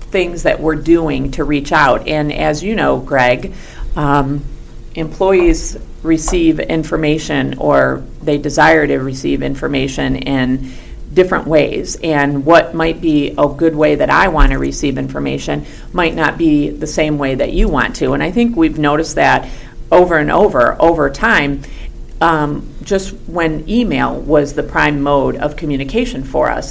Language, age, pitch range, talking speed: English, 40-59, 135-165 Hz, 160 wpm